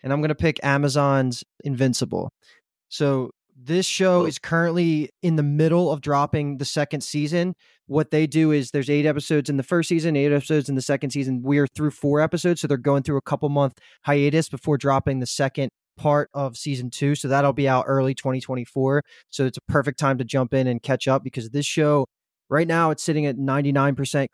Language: English